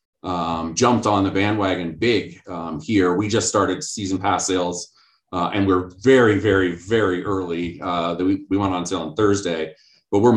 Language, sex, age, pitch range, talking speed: English, male, 30-49, 90-120 Hz, 185 wpm